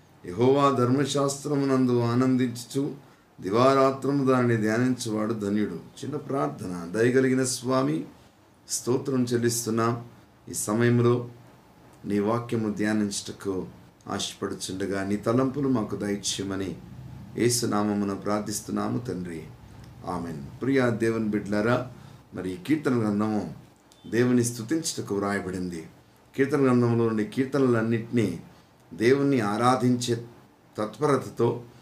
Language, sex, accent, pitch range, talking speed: Telugu, male, native, 105-135 Hz, 80 wpm